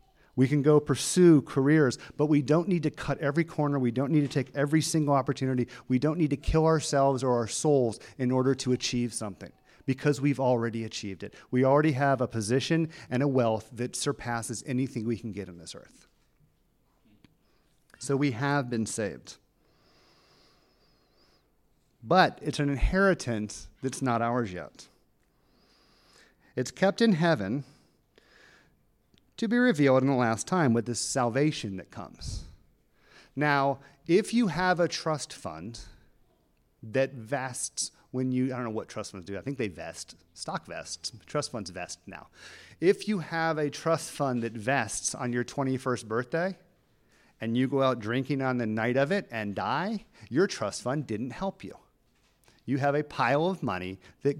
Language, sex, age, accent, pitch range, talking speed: English, male, 40-59, American, 115-150 Hz, 165 wpm